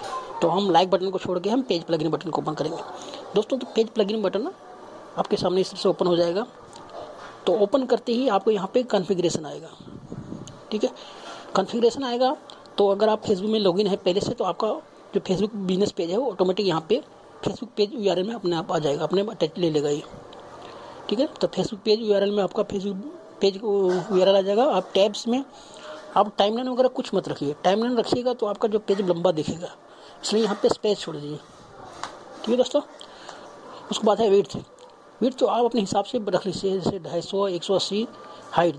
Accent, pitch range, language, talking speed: native, 185-225 Hz, Hindi, 200 wpm